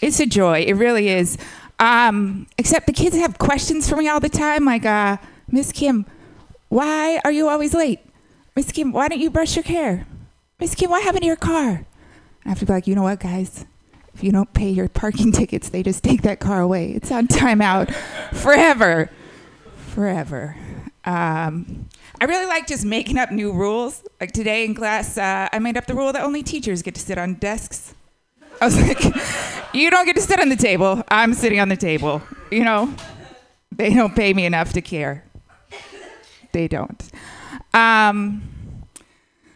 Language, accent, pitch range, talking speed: English, American, 185-280 Hz, 185 wpm